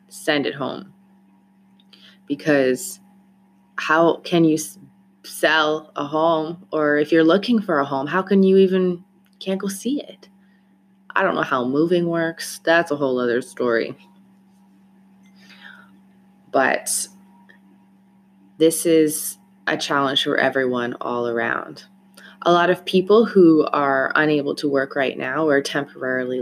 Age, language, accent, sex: 20-39, English, American, female